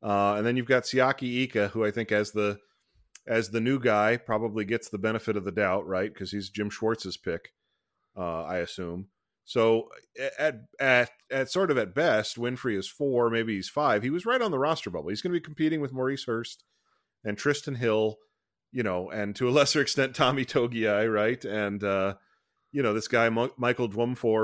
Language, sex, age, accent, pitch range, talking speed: English, male, 30-49, American, 105-135 Hz, 205 wpm